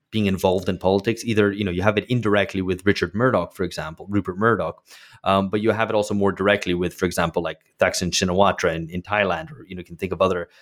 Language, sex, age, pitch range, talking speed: English, male, 30-49, 90-115 Hz, 245 wpm